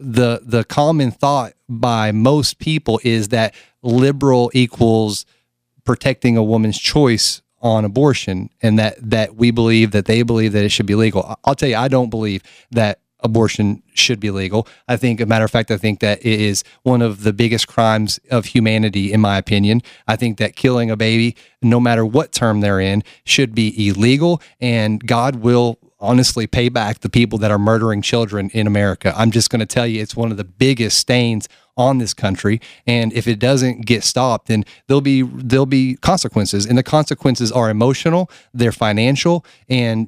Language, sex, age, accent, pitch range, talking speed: English, male, 30-49, American, 110-130 Hz, 190 wpm